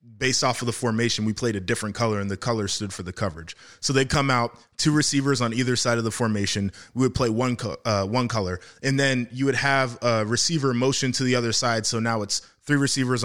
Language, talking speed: English, 245 wpm